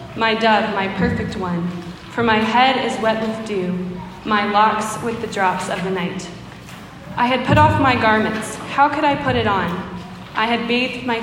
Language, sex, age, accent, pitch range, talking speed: English, female, 20-39, American, 195-235 Hz, 190 wpm